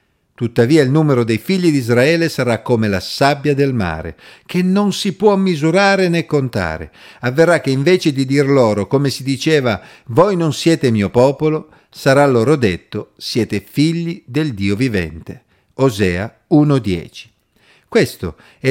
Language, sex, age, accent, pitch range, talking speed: Italian, male, 50-69, native, 105-155 Hz, 150 wpm